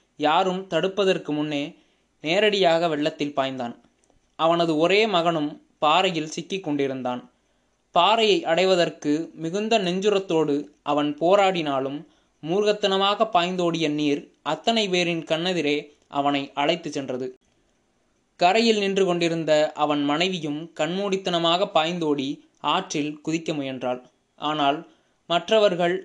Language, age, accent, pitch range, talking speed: Tamil, 20-39, native, 150-185 Hz, 90 wpm